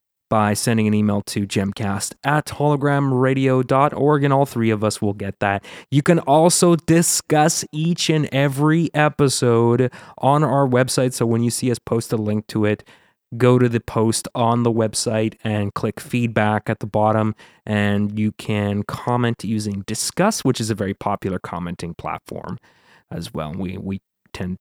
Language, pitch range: English, 105-145 Hz